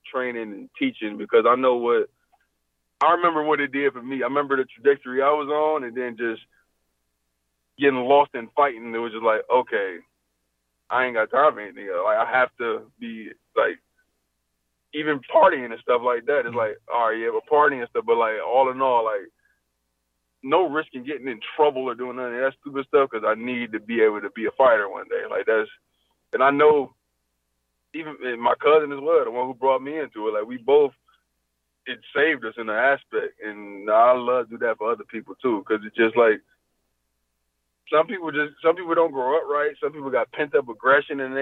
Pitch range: 110-155 Hz